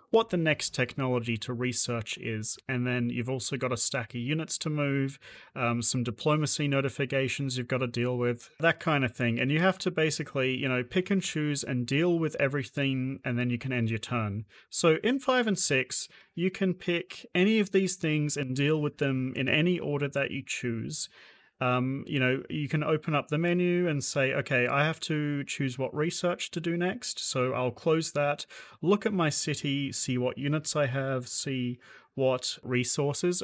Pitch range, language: 125-165 Hz, English